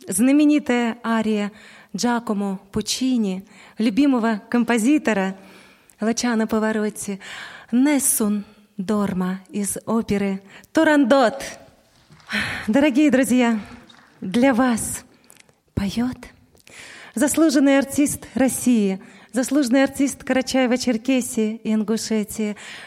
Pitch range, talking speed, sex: 215-270 Hz, 70 wpm, female